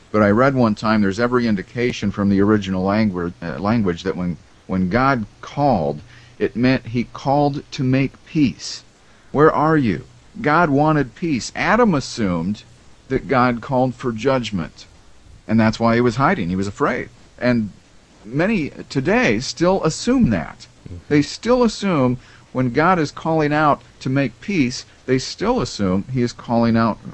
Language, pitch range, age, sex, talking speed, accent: English, 100-130 Hz, 50-69, male, 160 wpm, American